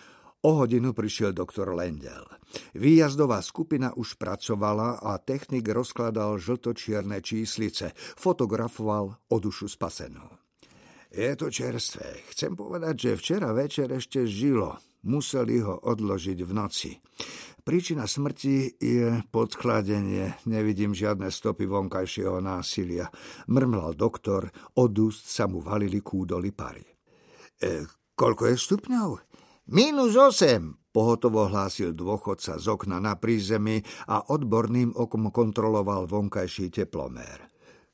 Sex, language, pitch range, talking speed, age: male, Slovak, 100-125 Hz, 110 wpm, 50-69